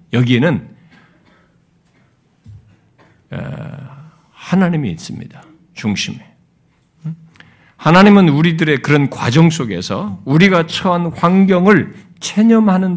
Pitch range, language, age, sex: 150-215 Hz, Korean, 50-69, male